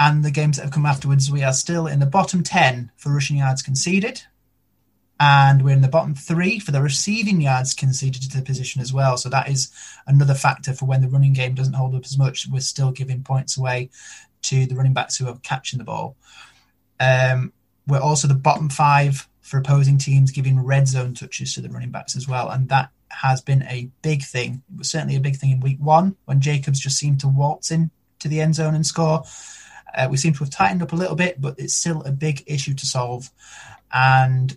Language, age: English, 20-39